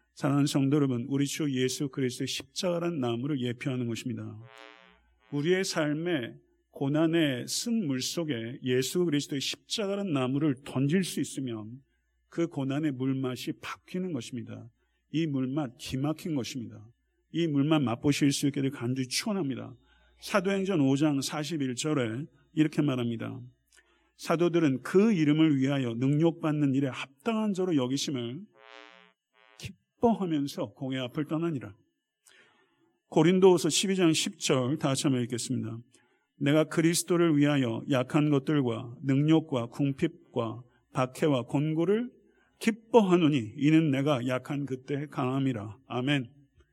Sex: male